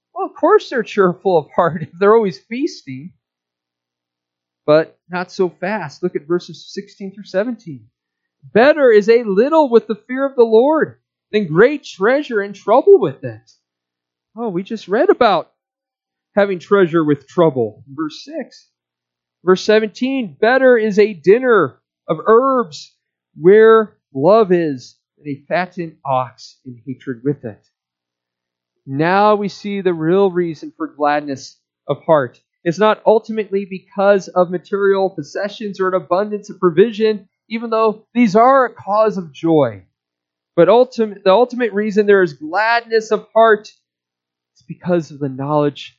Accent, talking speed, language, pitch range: American, 145 wpm, English, 135-210 Hz